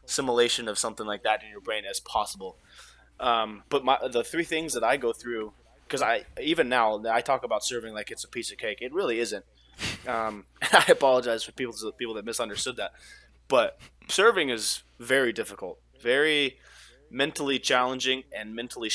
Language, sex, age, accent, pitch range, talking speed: English, male, 20-39, American, 105-130 Hz, 185 wpm